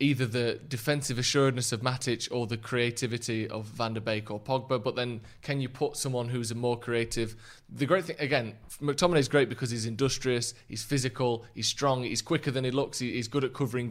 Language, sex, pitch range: English, male, 115-135 Hz